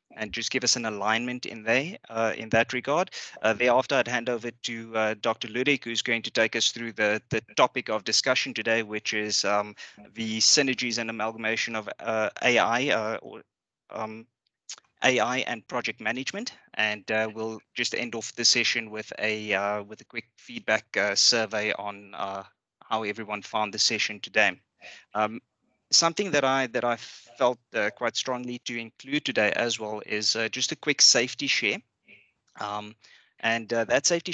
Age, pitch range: 30-49, 110-120 Hz